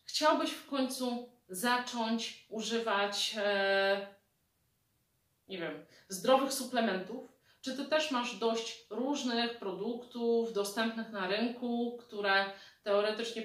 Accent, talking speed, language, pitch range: native, 100 wpm, Polish, 205-245 Hz